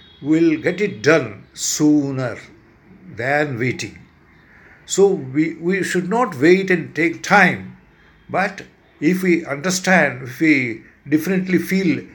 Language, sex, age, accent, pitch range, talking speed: English, male, 60-79, Indian, 115-170 Hz, 120 wpm